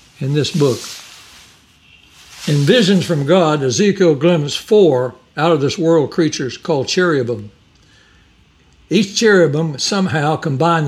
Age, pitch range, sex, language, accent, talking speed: 60-79, 125-170 Hz, male, English, American, 100 wpm